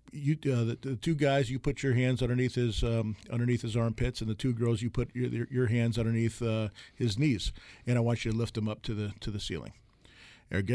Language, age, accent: English, 40-59, American